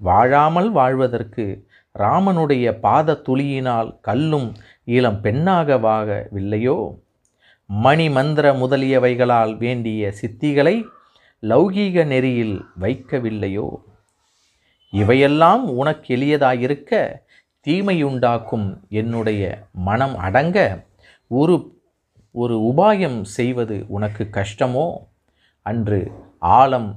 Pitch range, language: 105-145 Hz, Tamil